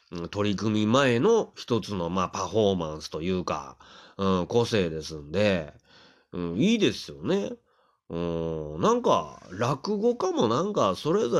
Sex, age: male, 30-49